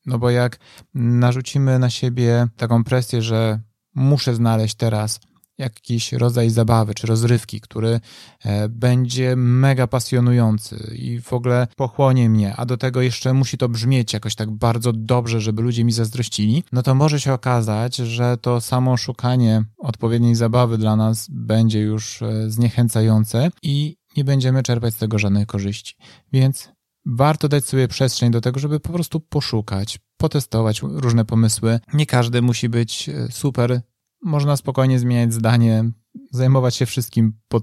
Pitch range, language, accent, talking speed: 110-125 Hz, Polish, native, 145 wpm